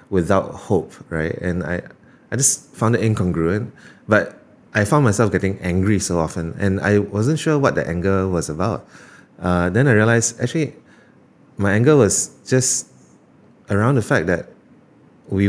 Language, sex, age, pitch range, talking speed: English, male, 20-39, 90-110 Hz, 160 wpm